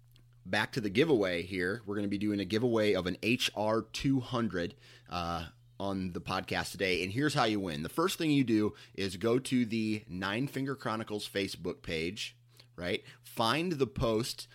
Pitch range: 95-120 Hz